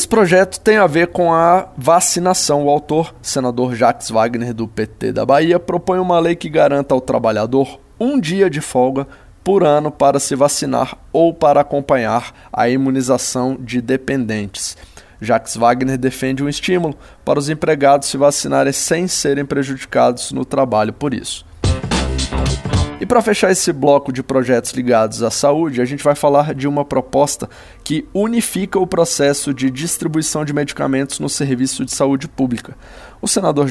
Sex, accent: male, Brazilian